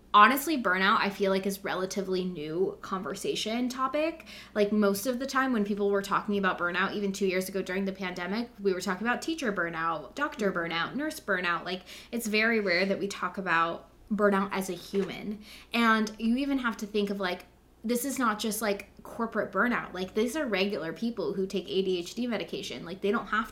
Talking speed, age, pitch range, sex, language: 200 wpm, 20-39, 185-230 Hz, female, English